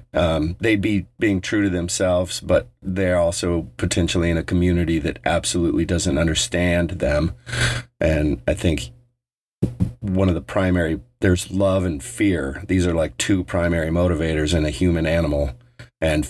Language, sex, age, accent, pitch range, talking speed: English, male, 40-59, American, 80-100 Hz, 150 wpm